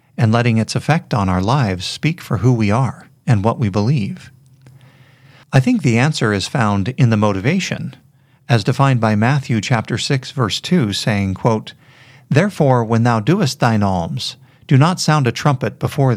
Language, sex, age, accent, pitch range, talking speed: English, male, 50-69, American, 110-135 Hz, 175 wpm